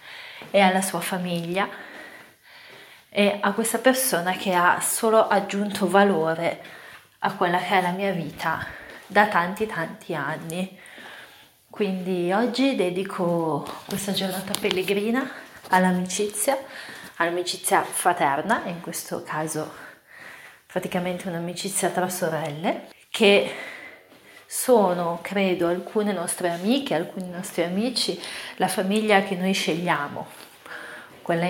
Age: 30-49